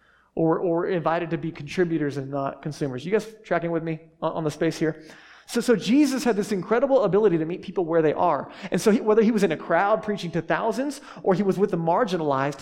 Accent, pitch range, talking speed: American, 155-200 Hz, 235 wpm